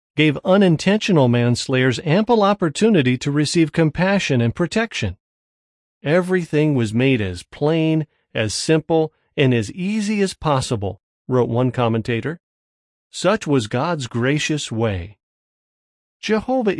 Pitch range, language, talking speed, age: 110-155 Hz, English, 110 wpm, 40-59